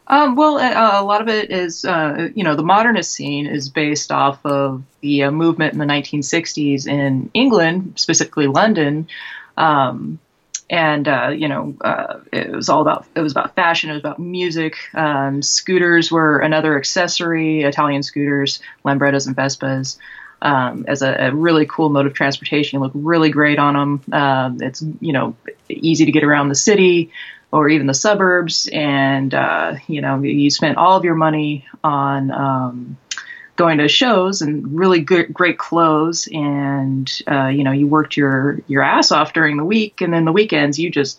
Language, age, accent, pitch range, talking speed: English, 20-39, American, 140-170 Hz, 180 wpm